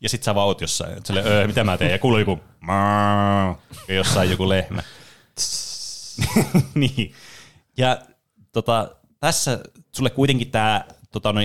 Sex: male